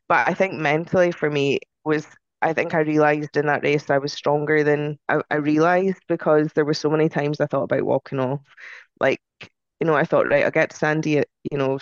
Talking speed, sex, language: 230 wpm, female, English